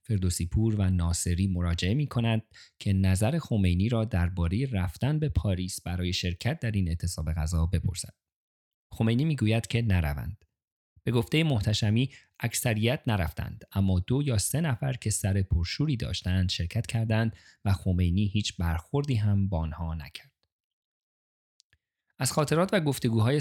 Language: Persian